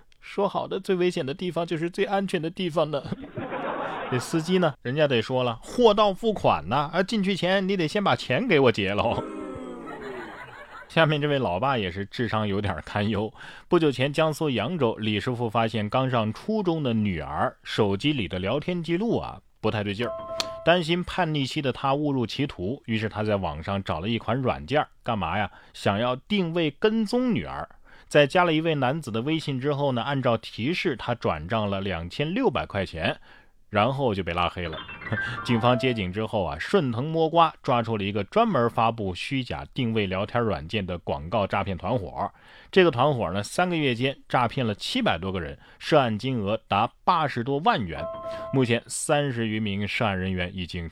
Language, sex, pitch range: Chinese, male, 100-150 Hz